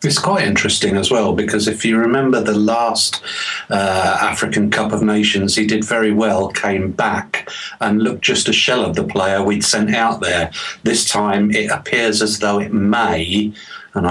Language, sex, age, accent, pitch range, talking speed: English, male, 50-69, British, 95-110 Hz, 185 wpm